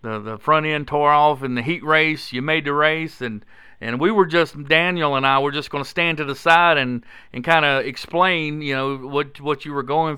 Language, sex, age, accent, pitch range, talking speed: English, male, 50-69, American, 120-150 Hz, 240 wpm